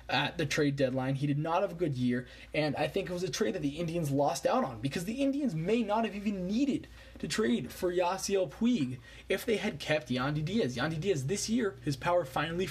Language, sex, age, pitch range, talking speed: English, male, 20-39, 135-200 Hz, 235 wpm